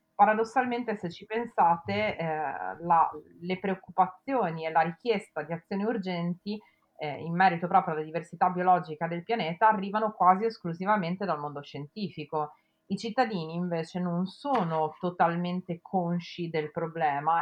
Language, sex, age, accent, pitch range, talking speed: Italian, female, 30-49, native, 165-205 Hz, 130 wpm